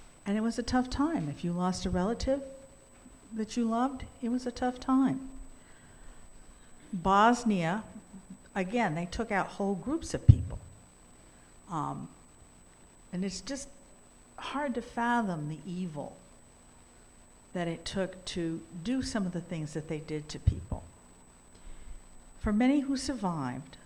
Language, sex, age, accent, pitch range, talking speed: English, female, 60-79, American, 125-210 Hz, 140 wpm